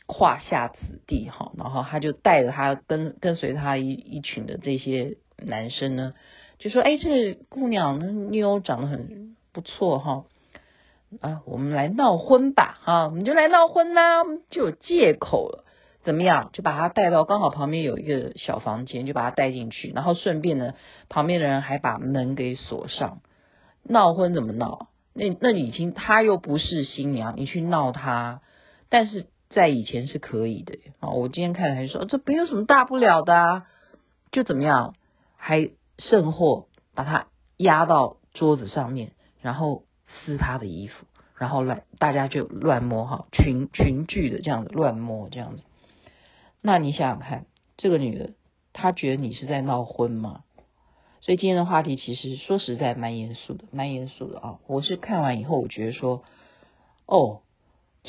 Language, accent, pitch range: Chinese, native, 130-190 Hz